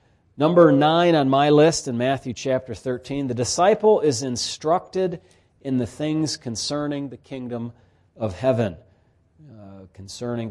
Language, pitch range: English, 105-130 Hz